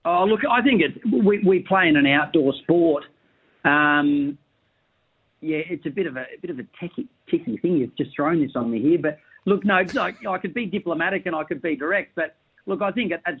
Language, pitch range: English, 130-155 Hz